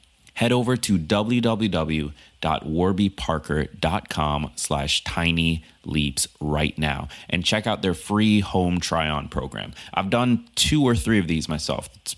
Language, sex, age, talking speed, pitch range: English, male, 30-49, 125 wpm, 80-115 Hz